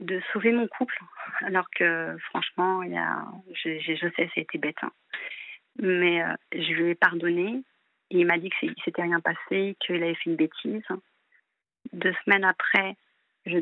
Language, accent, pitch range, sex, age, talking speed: French, French, 175-215 Hz, female, 40-59, 170 wpm